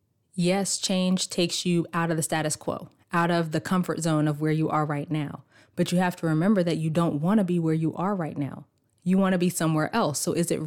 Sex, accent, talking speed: female, American, 255 wpm